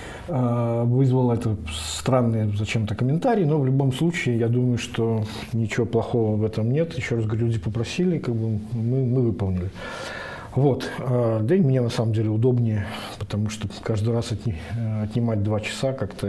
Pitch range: 110-130 Hz